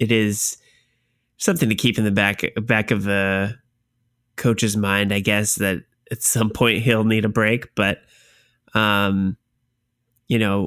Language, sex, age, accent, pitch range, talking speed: English, male, 20-39, American, 100-115 Hz, 150 wpm